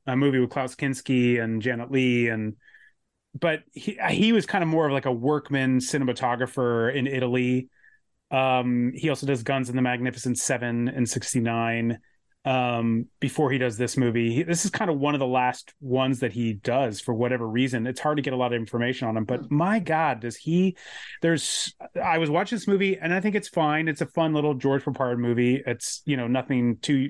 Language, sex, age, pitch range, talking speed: English, male, 30-49, 125-155 Hz, 210 wpm